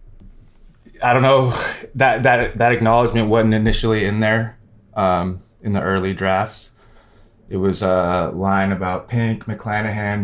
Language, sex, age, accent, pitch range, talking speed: English, male, 20-39, American, 95-110 Hz, 135 wpm